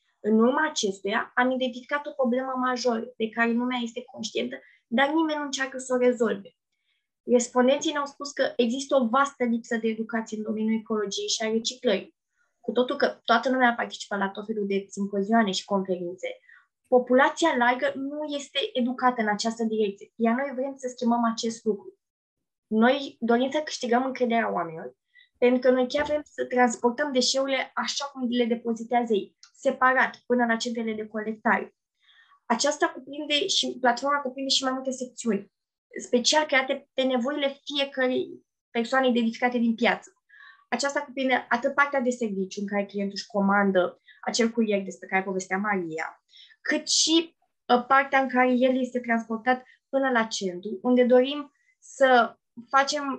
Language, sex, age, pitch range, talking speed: Romanian, female, 20-39, 230-275 Hz, 155 wpm